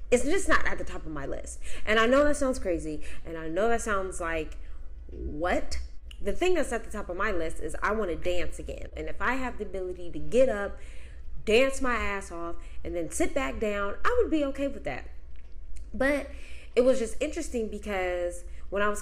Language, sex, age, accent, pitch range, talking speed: English, female, 10-29, American, 165-205 Hz, 220 wpm